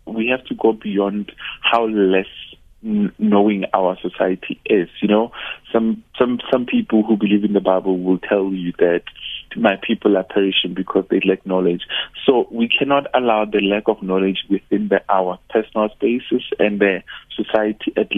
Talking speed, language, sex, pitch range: 170 wpm, English, male, 95-110 Hz